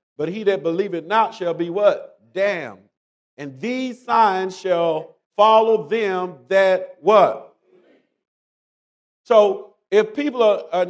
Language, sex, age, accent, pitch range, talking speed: English, male, 50-69, American, 190-250 Hz, 120 wpm